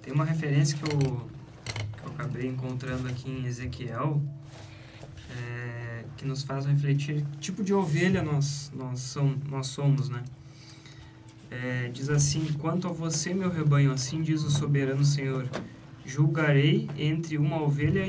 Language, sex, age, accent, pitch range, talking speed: Portuguese, male, 20-39, Brazilian, 125-145 Hz, 145 wpm